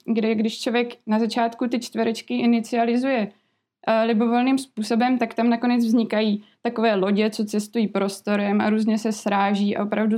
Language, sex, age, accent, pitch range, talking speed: Czech, female, 20-39, native, 220-250 Hz, 155 wpm